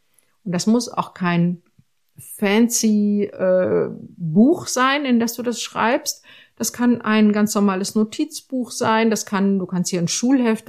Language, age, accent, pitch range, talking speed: German, 50-69, German, 165-225 Hz, 155 wpm